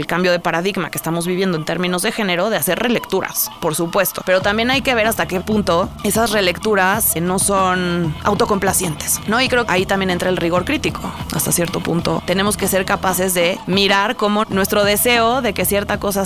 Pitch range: 185-235 Hz